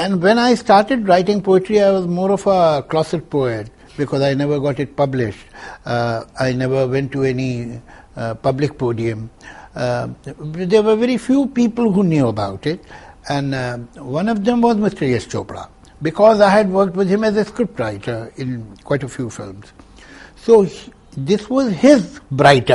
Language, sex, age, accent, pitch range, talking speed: English, male, 60-79, Indian, 125-195 Hz, 175 wpm